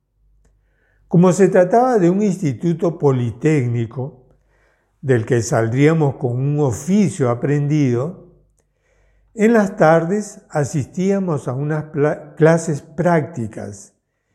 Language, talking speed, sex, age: Spanish, 90 wpm, male, 60-79